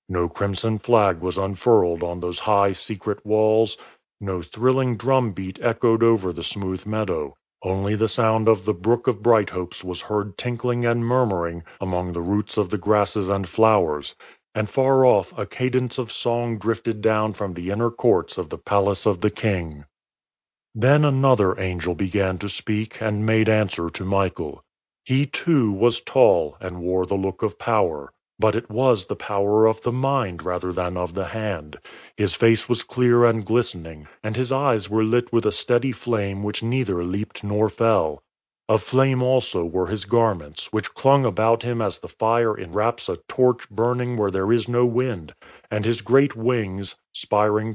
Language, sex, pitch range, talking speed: English, male, 95-120 Hz, 175 wpm